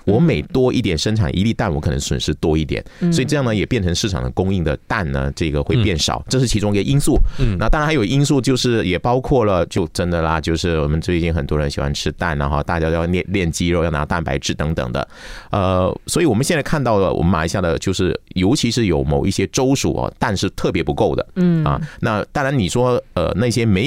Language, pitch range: Chinese, 80-120 Hz